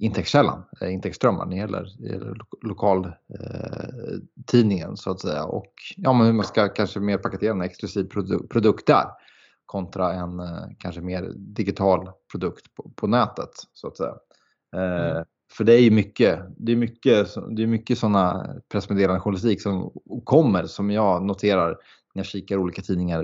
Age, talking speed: 20-39, 150 wpm